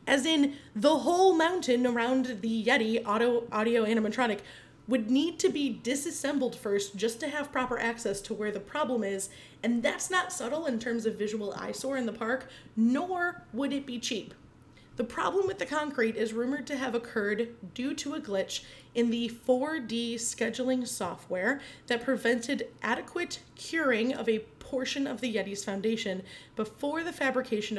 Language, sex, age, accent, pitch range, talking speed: English, female, 30-49, American, 215-265 Hz, 165 wpm